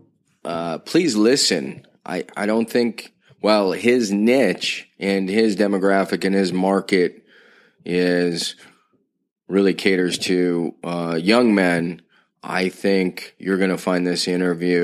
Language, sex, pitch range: English, male, 95-110 Hz